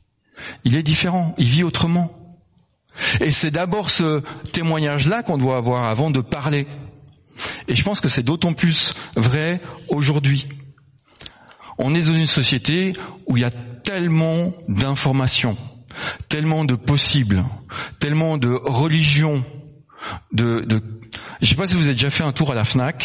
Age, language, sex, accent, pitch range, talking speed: 40-59, French, male, French, 115-150 Hz, 155 wpm